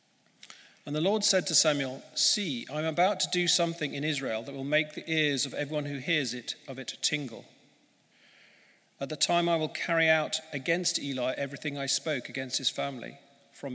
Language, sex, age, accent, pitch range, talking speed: English, male, 40-59, British, 130-155 Hz, 190 wpm